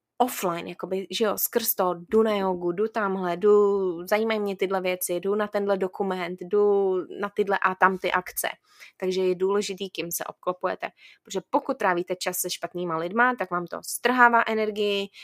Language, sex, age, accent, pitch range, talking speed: Czech, female, 20-39, native, 185-235 Hz, 175 wpm